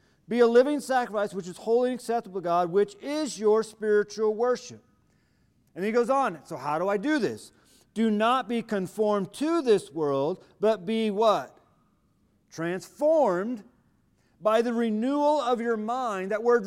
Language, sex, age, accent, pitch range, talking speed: English, male, 40-59, American, 195-250 Hz, 160 wpm